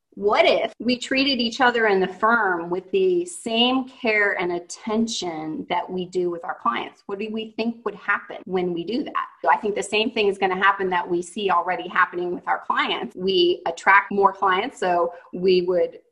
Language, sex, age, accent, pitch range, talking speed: English, female, 30-49, American, 185-230 Hz, 205 wpm